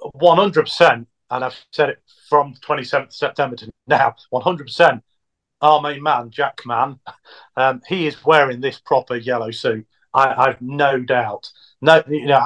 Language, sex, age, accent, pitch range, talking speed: English, male, 40-59, British, 120-150 Hz, 160 wpm